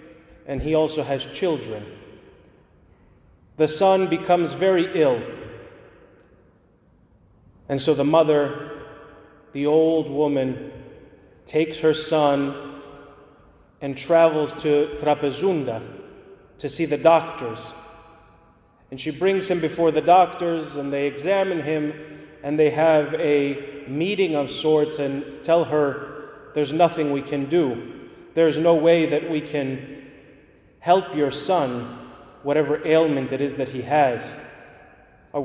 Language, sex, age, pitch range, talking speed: English, male, 30-49, 140-160 Hz, 120 wpm